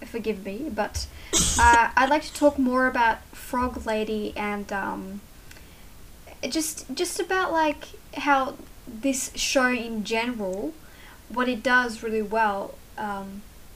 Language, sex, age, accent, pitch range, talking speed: English, female, 10-29, Australian, 210-255 Hz, 125 wpm